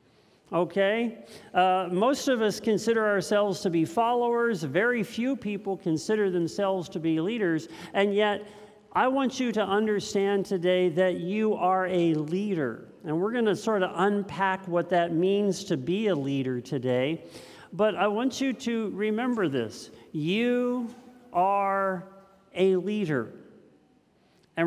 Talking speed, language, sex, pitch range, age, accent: 140 wpm, English, male, 165-210 Hz, 50-69, American